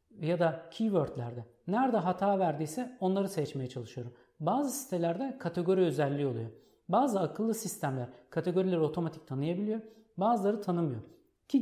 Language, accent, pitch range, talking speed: Turkish, native, 150-205 Hz, 120 wpm